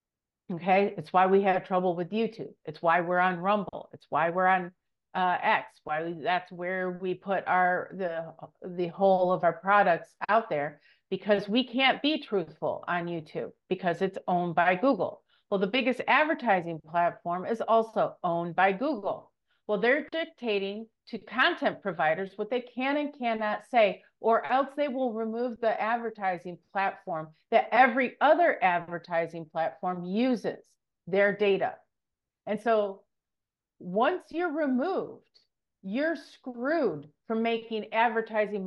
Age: 40-59